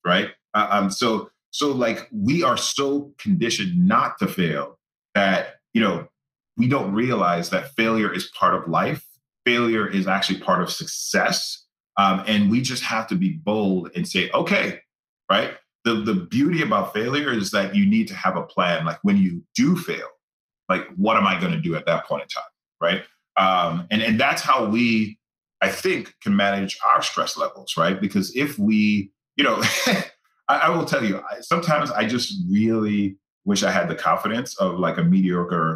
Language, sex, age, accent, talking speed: English, male, 30-49, American, 185 wpm